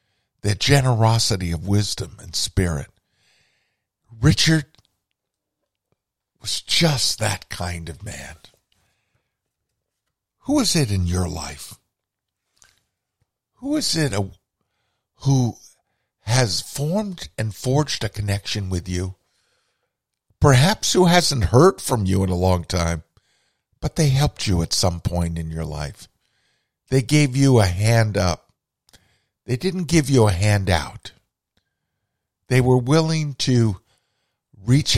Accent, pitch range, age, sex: American, 90-120 Hz, 50-69, male